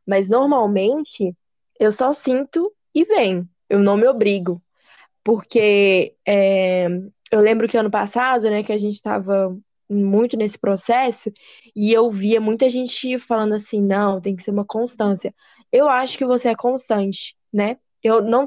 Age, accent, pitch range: 10-29, Brazilian, 200-255 Hz